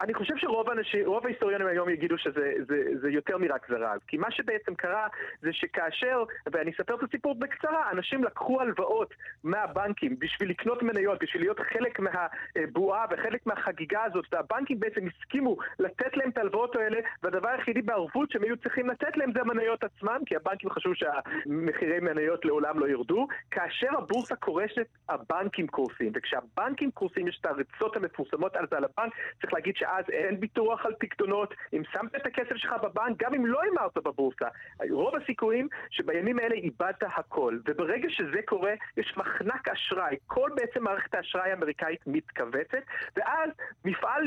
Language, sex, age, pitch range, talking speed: Hebrew, male, 30-49, 190-270 Hz, 145 wpm